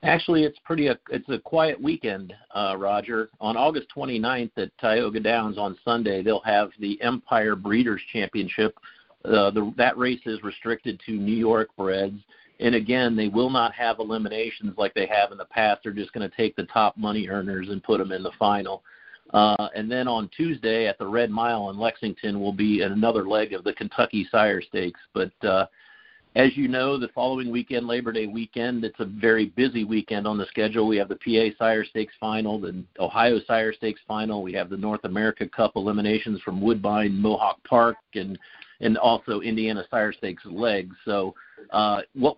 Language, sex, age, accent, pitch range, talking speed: English, male, 50-69, American, 105-115 Hz, 185 wpm